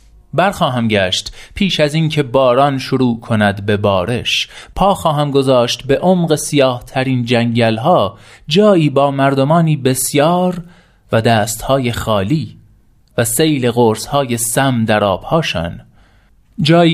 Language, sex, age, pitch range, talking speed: Persian, male, 30-49, 110-155 Hz, 115 wpm